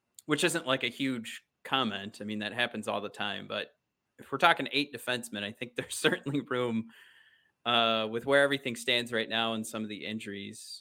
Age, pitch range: 30-49, 110-145 Hz